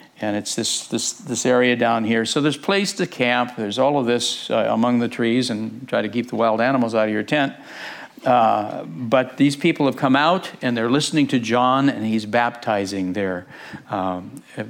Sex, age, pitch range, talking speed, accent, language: male, 60-79, 120-160 Hz, 200 wpm, American, English